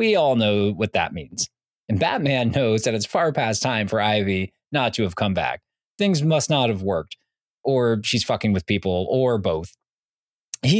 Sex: male